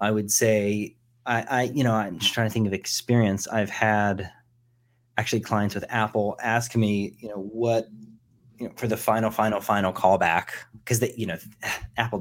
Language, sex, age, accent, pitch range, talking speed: English, male, 30-49, American, 105-130 Hz, 185 wpm